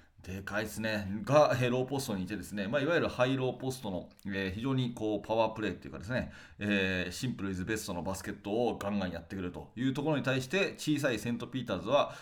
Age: 30-49